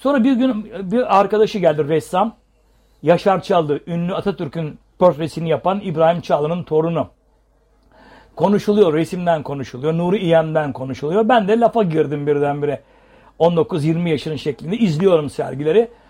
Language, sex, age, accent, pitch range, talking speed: Turkish, male, 60-79, native, 145-190 Hz, 120 wpm